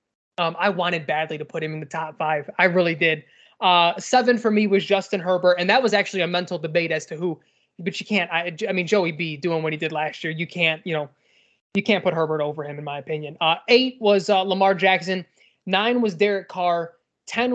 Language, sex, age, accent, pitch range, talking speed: English, male, 20-39, American, 175-225 Hz, 235 wpm